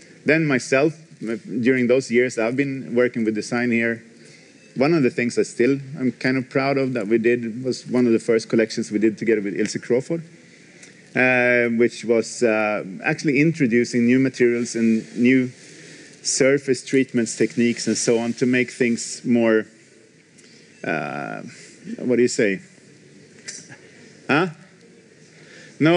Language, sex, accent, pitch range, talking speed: English, male, Norwegian, 110-135 Hz, 150 wpm